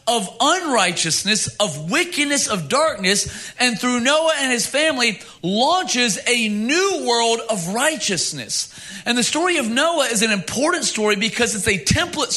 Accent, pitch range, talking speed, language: American, 185-245 Hz, 150 wpm, English